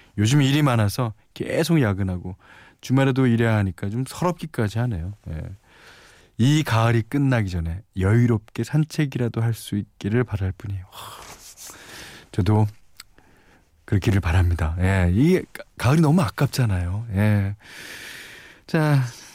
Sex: male